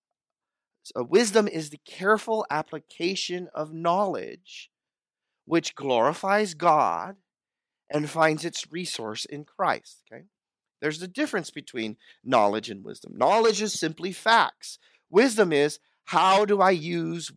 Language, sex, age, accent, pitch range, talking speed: English, male, 40-59, American, 150-200 Hz, 120 wpm